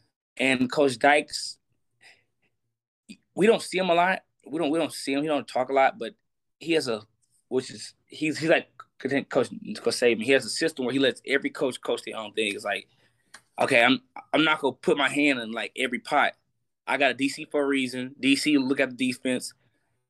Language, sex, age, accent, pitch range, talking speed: English, male, 20-39, American, 110-135 Hz, 210 wpm